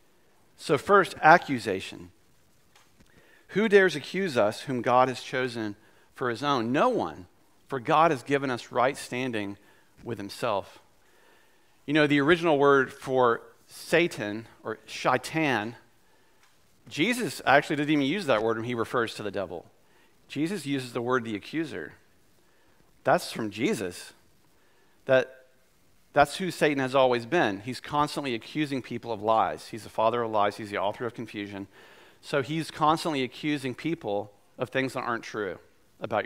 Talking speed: 150 wpm